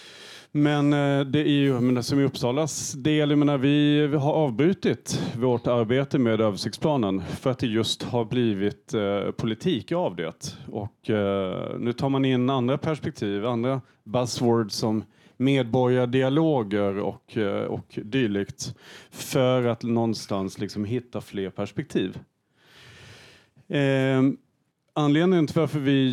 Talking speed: 115 wpm